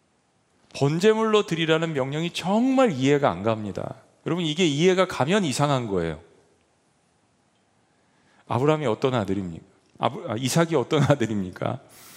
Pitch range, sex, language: 125-185 Hz, male, Korean